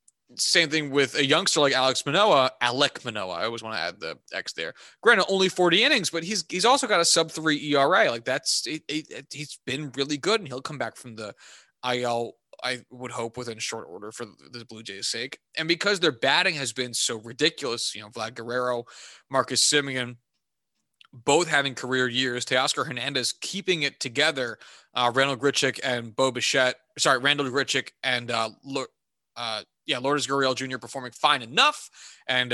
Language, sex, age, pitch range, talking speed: English, male, 20-39, 120-150 Hz, 190 wpm